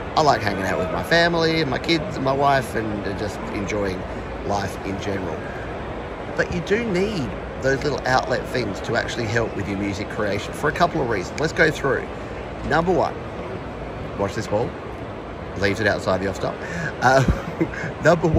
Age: 30-49